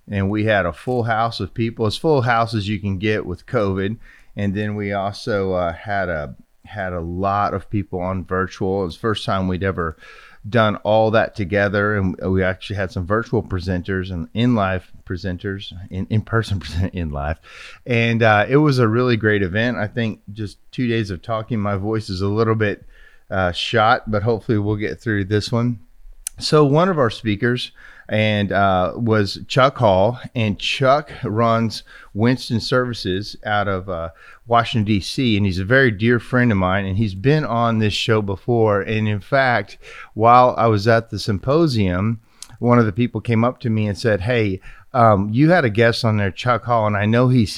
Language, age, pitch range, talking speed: English, 30-49, 95-115 Hz, 195 wpm